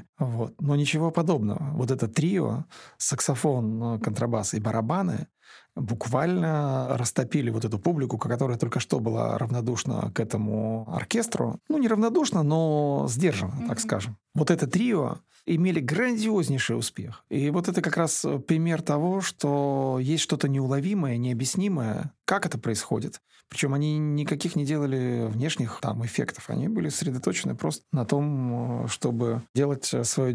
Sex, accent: male, native